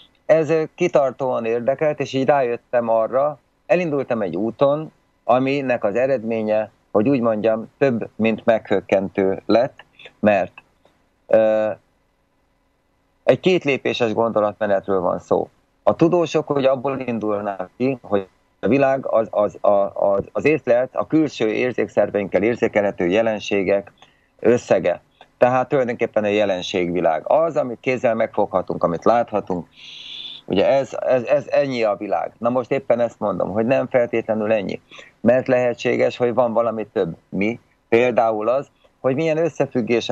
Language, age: Slovak, 30-49